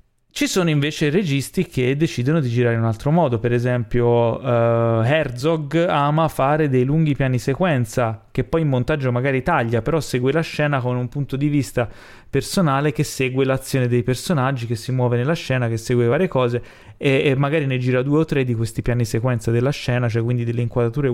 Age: 20-39